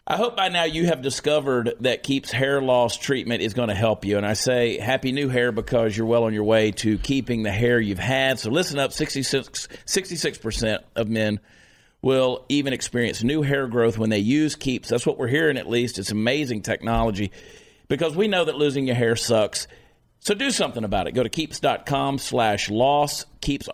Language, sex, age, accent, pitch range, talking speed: English, male, 40-59, American, 110-135 Hz, 200 wpm